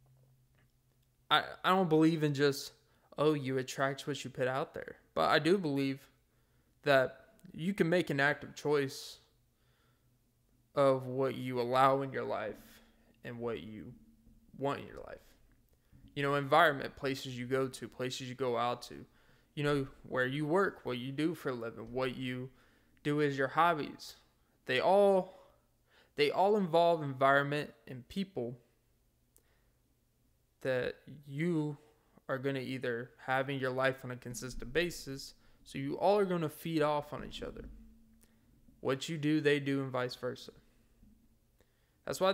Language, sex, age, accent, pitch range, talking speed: English, male, 20-39, American, 125-155 Hz, 155 wpm